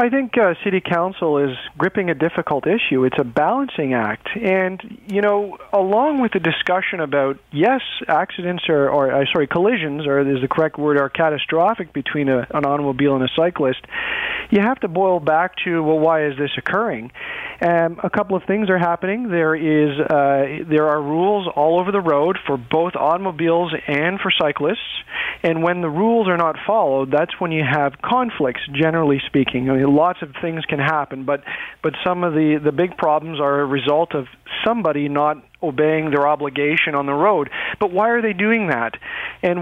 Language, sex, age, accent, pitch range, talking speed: English, male, 40-59, American, 145-190 Hz, 190 wpm